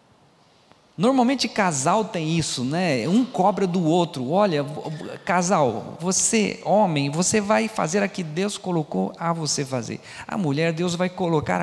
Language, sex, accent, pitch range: Portuguese, male, Brazilian, 150-220 Hz